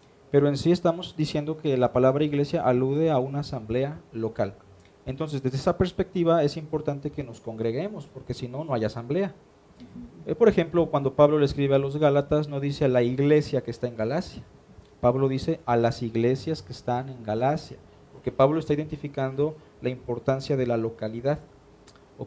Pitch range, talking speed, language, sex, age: 125-150 Hz, 180 wpm, Spanish, male, 40-59